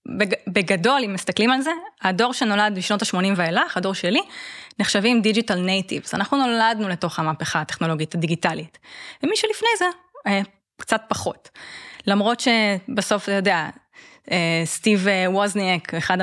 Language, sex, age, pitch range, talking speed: Hebrew, female, 20-39, 190-245 Hz, 120 wpm